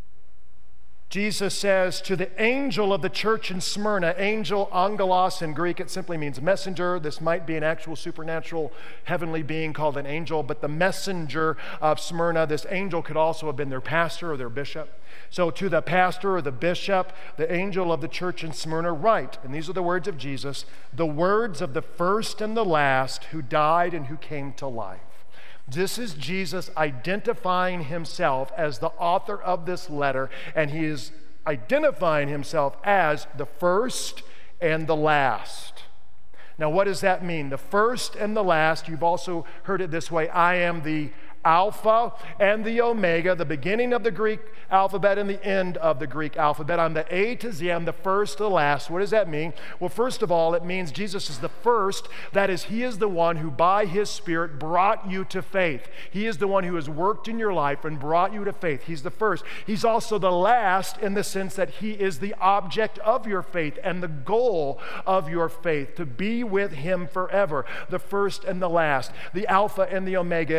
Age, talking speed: 50-69, 195 wpm